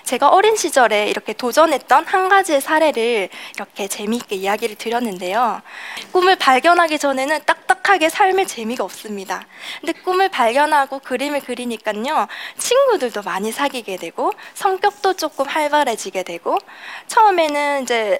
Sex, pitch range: female, 225-320 Hz